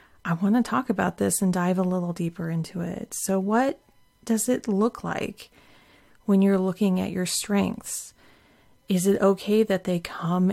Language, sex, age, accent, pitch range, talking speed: English, female, 30-49, American, 175-205 Hz, 175 wpm